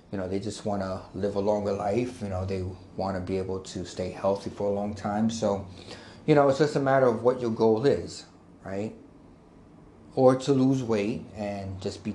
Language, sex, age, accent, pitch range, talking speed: English, male, 30-49, American, 95-130 Hz, 205 wpm